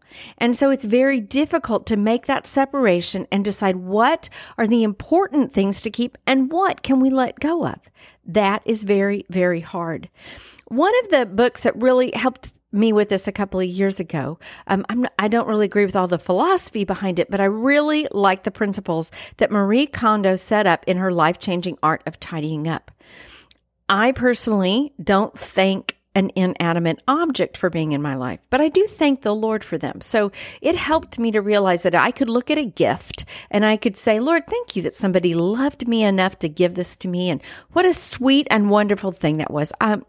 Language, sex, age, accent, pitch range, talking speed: English, female, 50-69, American, 185-260 Hz, 200 wpm